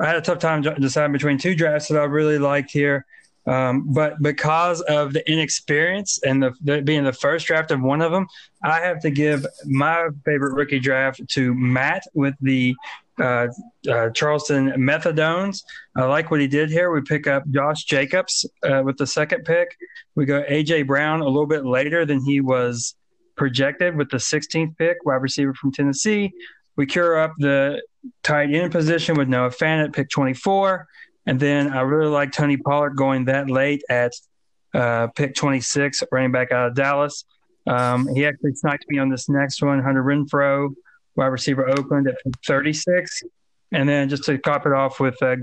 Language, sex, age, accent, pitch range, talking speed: English, male, 30-49, American, 135-155 Hz, 180 wpm